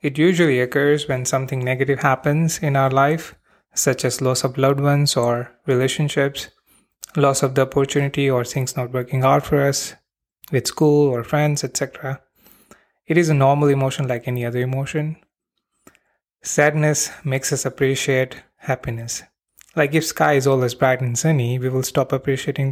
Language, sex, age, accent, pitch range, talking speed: English, male, 20-39, Indian, 130-150 Hz, 160 wpm